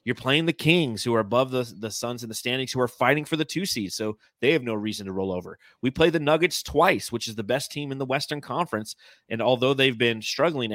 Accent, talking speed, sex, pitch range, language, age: American, 260 wpm, male, 105-130 Hz, English, 30-49